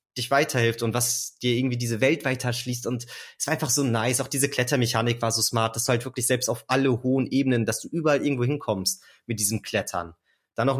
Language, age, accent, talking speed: German, 30-49, German, 220 wpm